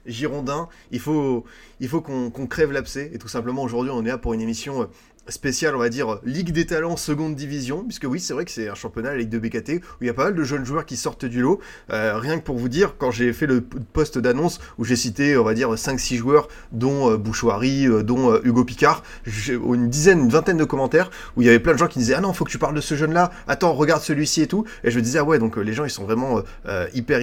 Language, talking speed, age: French, 275 wpm, 20-39